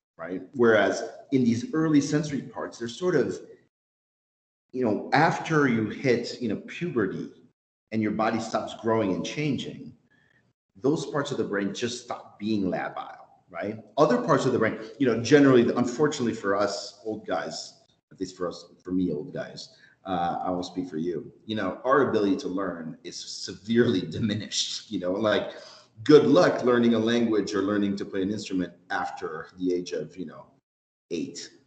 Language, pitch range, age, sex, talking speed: English, 100-140 Hz, 40-59, male, 175 wpm